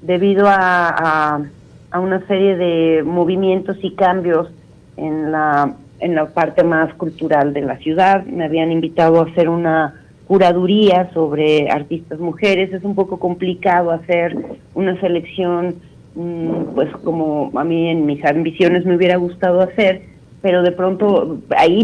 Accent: Mexican